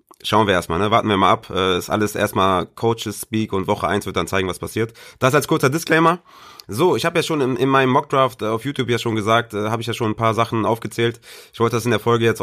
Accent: German